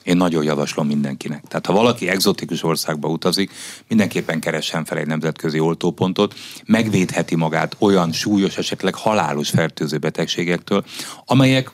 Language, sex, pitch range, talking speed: Hungarian, male, 80-100 Hz, 130 wpm